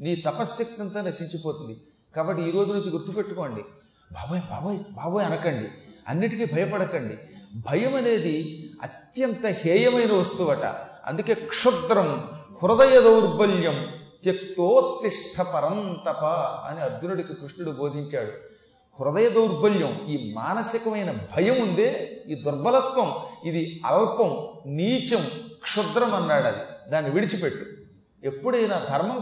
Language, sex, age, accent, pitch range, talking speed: Telugu, male, 40-59, native, 155-215 Hz, 100 wpm